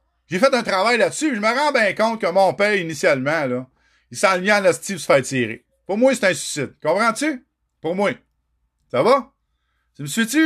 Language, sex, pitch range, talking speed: French, male, 190-260 Hz, 220 wpm